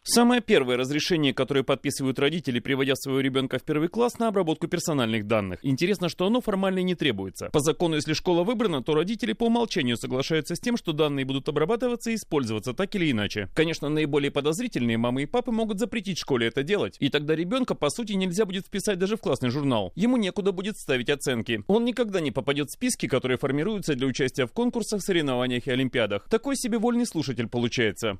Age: 30-49